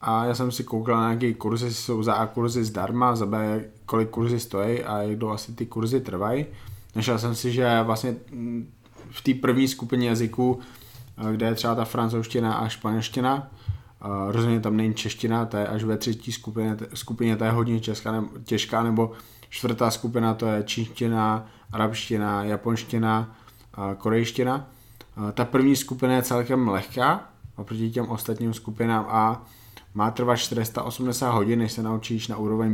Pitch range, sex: 110-125 Hz, male